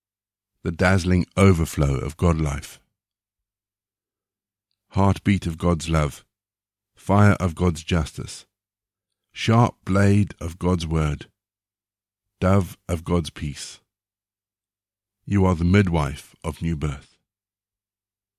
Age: 50-69